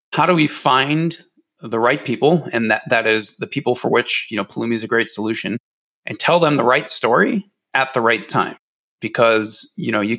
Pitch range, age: 115-145 Hz, 30-49